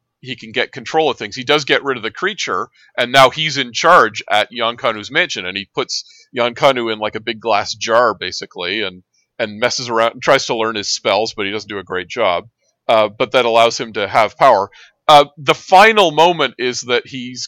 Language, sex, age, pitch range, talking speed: English, male, 40-59, 110-150 Hz, 225 wpm